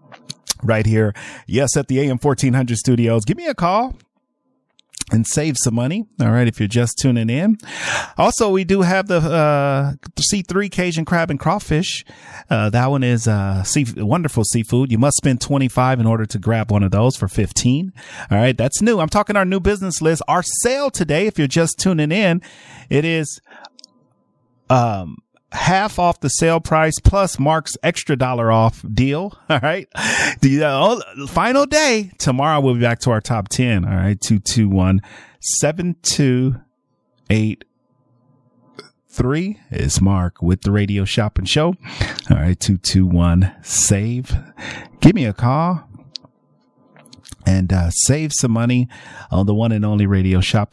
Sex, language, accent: male, English, American